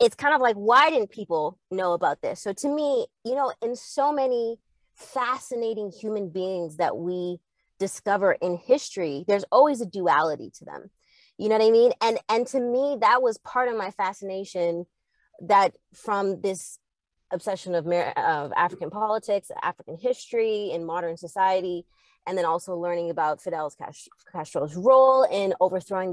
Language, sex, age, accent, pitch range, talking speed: English, female, 20-39, American, 180-225 Hz, 160 wpm